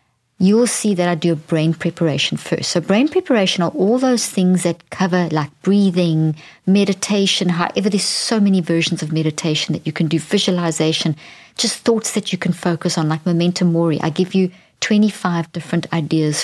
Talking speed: 180 wpm